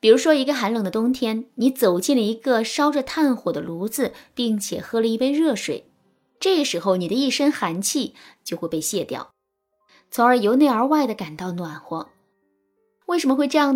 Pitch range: 190-280 Hz